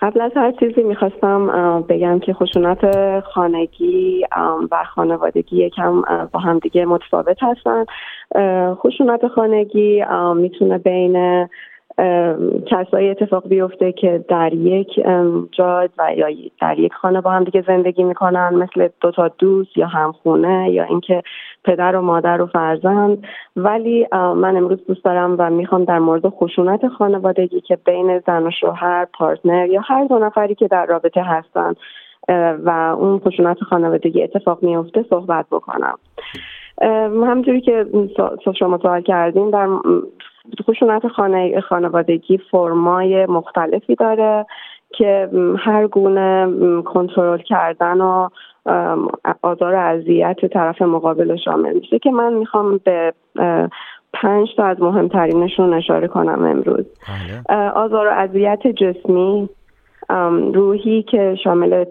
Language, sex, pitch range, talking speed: Persian, female, 175-200 Hz, 125 wpm